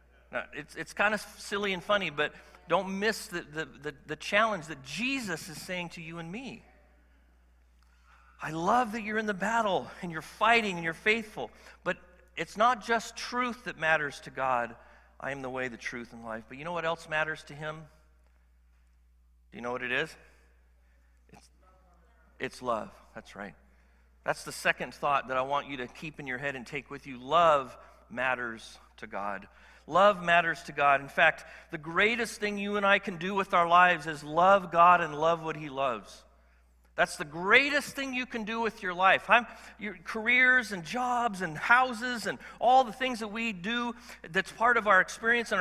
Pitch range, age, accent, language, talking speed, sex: 140-225 Hz, 50-69, American, English, 195 wpm, male